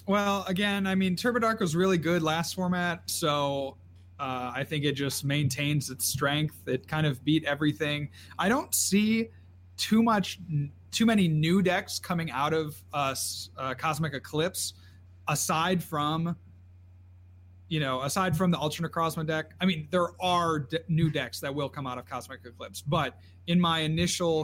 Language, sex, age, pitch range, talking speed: English, male, 30-49, 125-165 Hz, 170 wpm